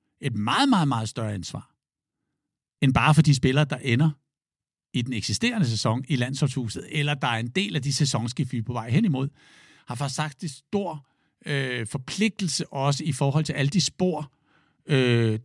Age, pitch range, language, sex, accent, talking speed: 60-79, 130-165 Hz, Danish, male, native, 175 wpm